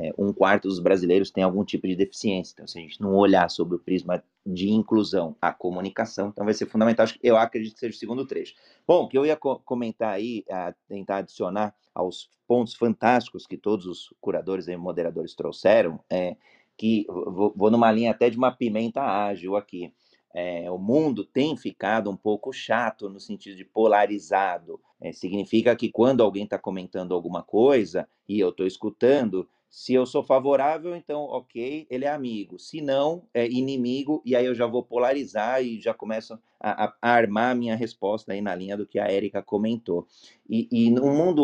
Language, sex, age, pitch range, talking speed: Portuguese, male, 30-49, 100-125 Hz, 180 wpm